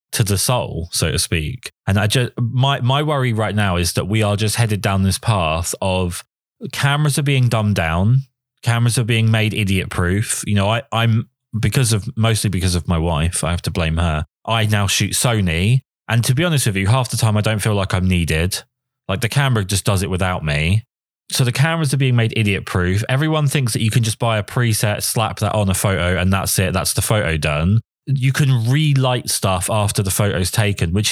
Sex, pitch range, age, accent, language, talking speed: male, 95-125 Hz, 20-39, British, English, 225 wpm